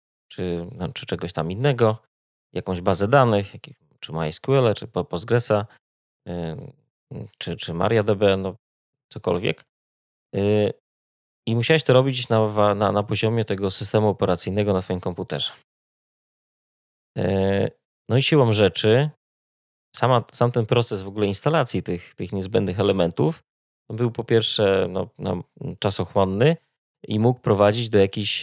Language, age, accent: Polish, 20-39, native